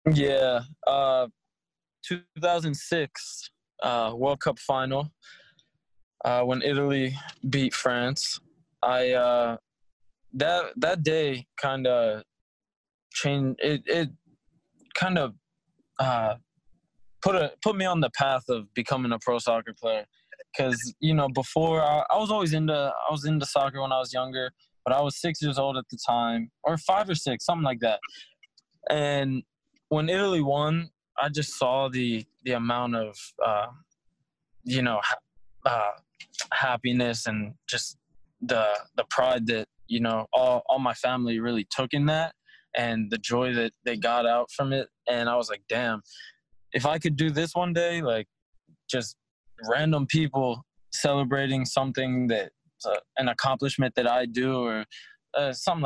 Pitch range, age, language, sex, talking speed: 120-150 Hz, 20-39, English, male, 150 wpm